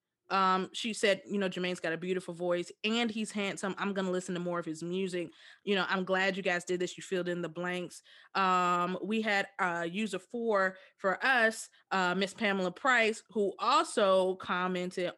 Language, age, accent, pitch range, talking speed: English, 20-39, American, 170-190 Hz, 200 wpm